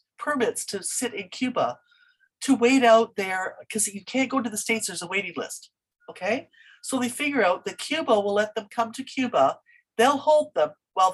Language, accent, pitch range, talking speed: English, American, 165-220 Hz, 200 wpm